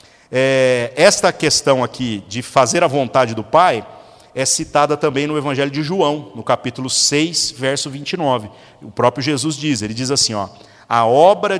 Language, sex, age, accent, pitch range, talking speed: Portuguese, male, 50-69, Brazilian, 120-145 Hz, 155 wpm